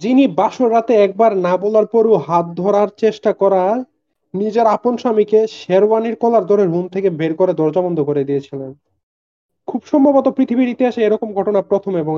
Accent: native